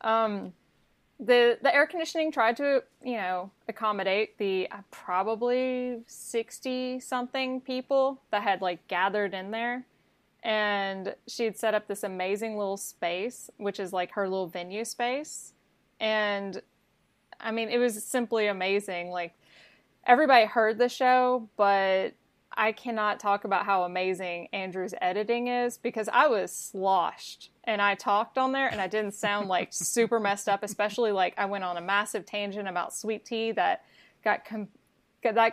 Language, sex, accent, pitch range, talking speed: English, female, American, 200-245 Hz, 150 wpm